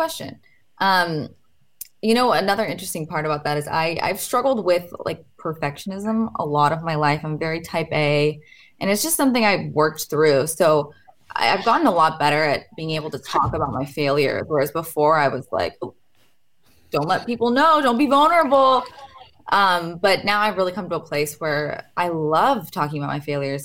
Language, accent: English, American